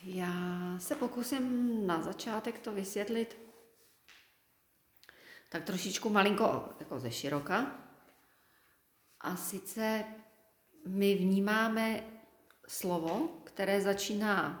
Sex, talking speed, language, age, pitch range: female, 80 wpm, Czech, 40-59, 165-205 Hz